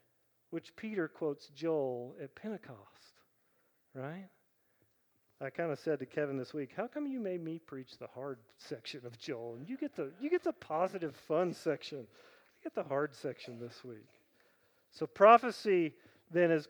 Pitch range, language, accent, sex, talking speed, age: 155-235 Hz, English, American, male, 170 wpm, 40-59